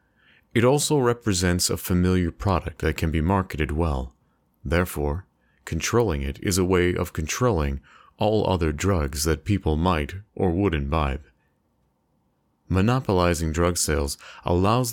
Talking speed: 130 wpm